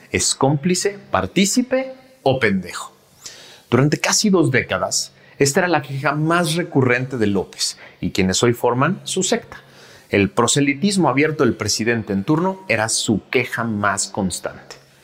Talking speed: 140 wpm